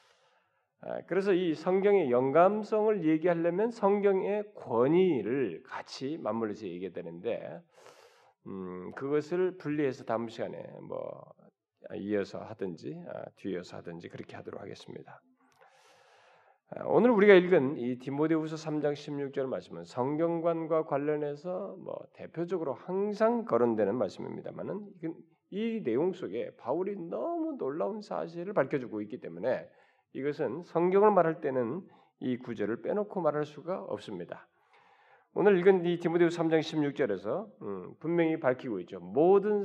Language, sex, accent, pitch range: Korean, male, native, 135-195 Hz